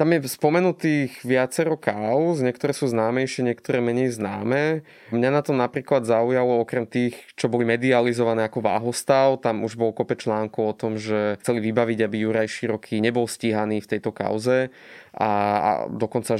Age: 20-39